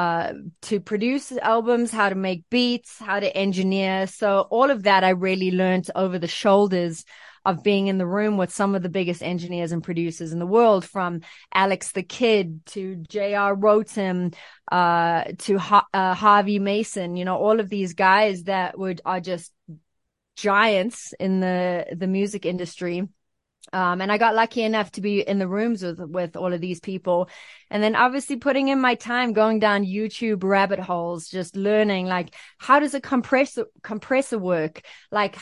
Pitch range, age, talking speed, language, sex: 185-225 Hz, 30-49, 175 wpm, English, female